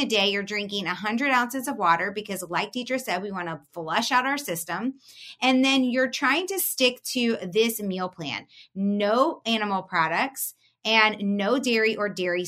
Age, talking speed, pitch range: 30-49, 175 wpm, 190-250 Hz